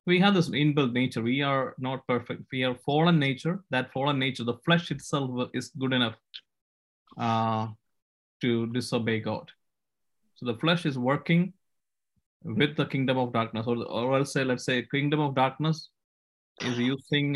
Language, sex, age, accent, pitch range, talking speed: English, male, 20-39, Indian, 120-140 Hz, 155 wpm